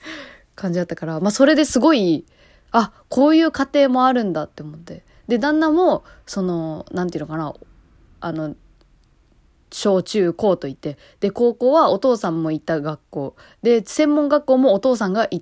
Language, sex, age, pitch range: Japanese, female, 20-39, 165-235 Hz